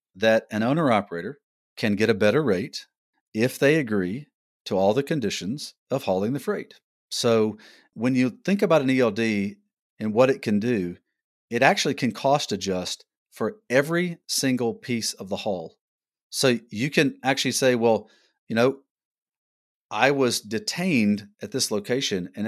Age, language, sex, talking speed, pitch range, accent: 40-59, English, male, 160 wpm, 105-130 Hz, American